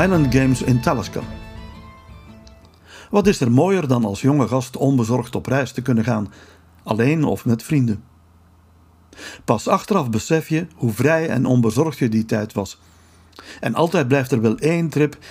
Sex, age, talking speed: male, 60-79, 160 wpm